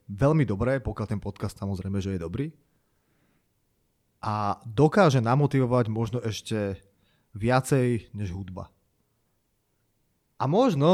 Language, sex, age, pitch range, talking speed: Slovak, male, 30-49, 105-130 Hz, 105 wpm